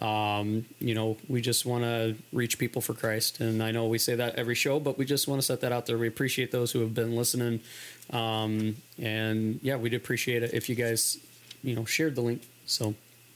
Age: 20-39